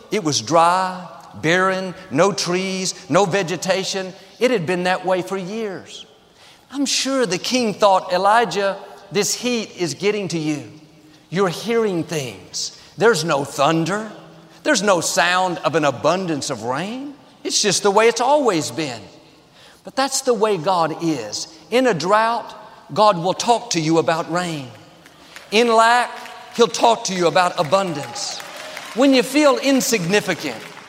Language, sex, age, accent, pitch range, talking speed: English, male, 50-69, American, 160-230 Hz, 150 wpm